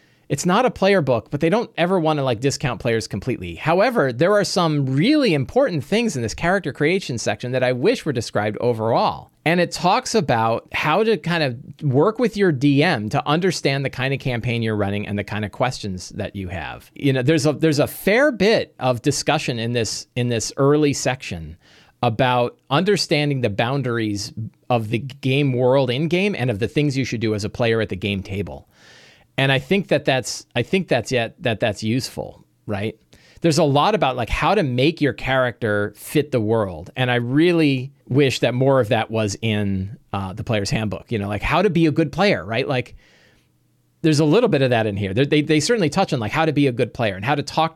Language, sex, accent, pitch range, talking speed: English, male, American, 110-155 Hz, 220 wpm